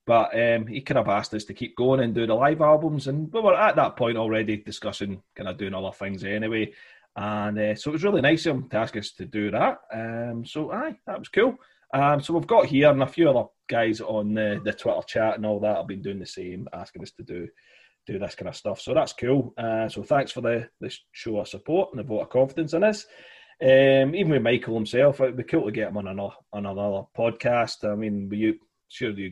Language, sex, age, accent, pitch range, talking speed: English, male, 30-49, British, 105-135 Hz, 250 wpm